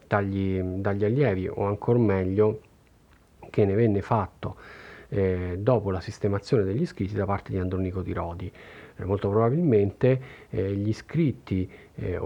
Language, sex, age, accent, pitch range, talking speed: Italian, male, 40-59, native, 95-135 Hz, 140 wpm